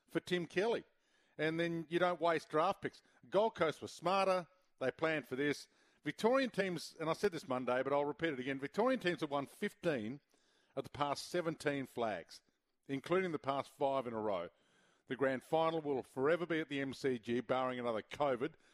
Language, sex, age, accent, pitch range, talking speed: English, male, 50-69, Australian, 120-160 Hz, 190 wpm